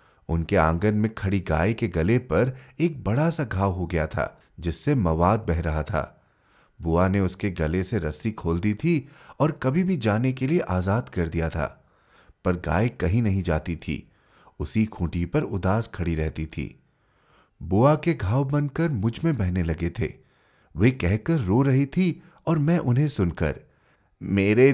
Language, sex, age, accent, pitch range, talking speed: Hindi, male, 30-49, native, 90-140 Hz, 170 wpm